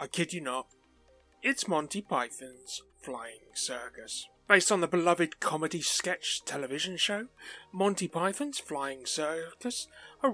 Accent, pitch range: British, 145-240 Hz